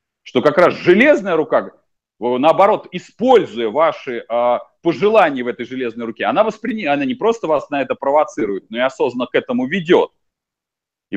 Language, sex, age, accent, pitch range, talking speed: Russian, male, 30-49, native, 140-195 Hz, 155 wpm